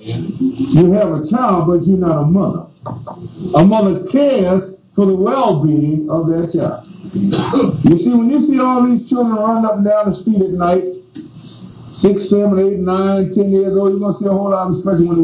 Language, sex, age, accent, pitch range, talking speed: English, male, 50-69, American, 165-245 Hz, 205 wpm